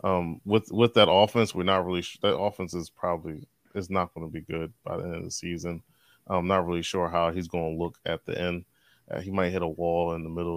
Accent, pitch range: American, 85-100 Hz